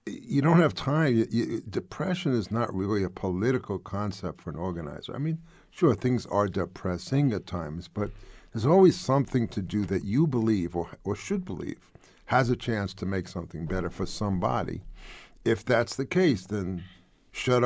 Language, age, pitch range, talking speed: English, 50-69, 90-115 Hz, 170 wpm